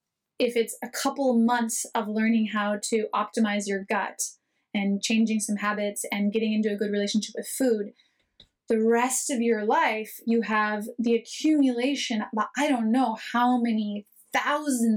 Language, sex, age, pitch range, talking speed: English, female, 20-39, 220-250 Hz, 155 wpm